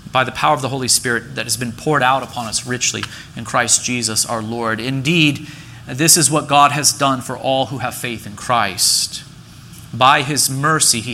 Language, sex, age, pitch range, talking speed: English, male, 30-49, 115-150 Hz, 205 wpm